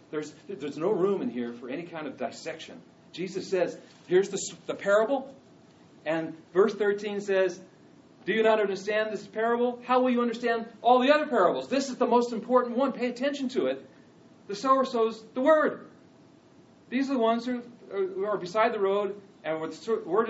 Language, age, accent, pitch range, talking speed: English, 40-59, American, 160-235 Hz, 190 wpm